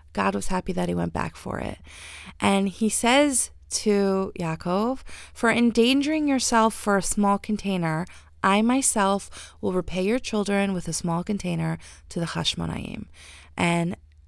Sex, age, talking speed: female, 20-39, 145 wpm